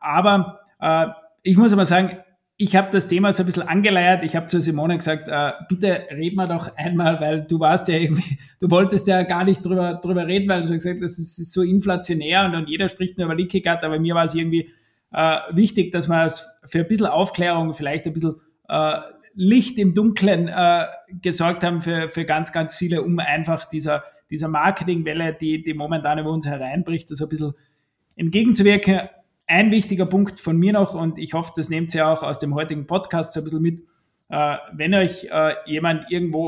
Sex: male